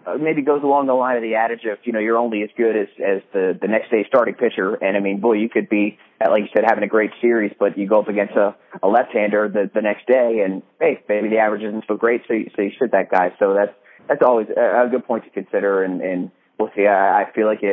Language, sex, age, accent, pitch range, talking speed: English, male, 20-39, American, 105-135 Hz, 280 wpm